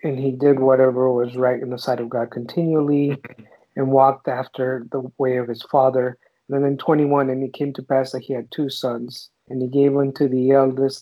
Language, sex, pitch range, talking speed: English, male, 130-150 Hz, 220 wpm